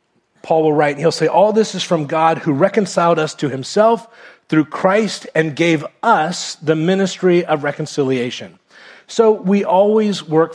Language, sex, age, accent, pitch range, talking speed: English, male, 40-59, American, 150-180 Hz, 165 wpm